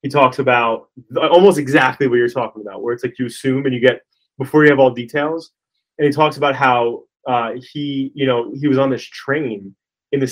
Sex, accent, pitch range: male, American, 125-145 Hz